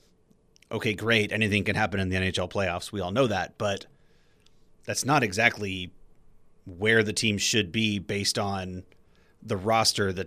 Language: English